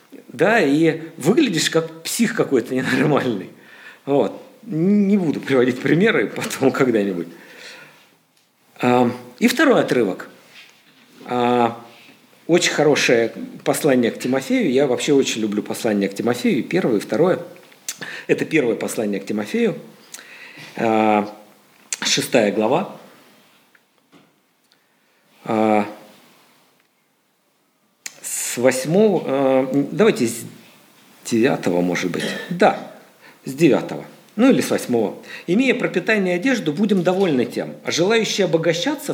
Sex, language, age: male, Russian, 50-69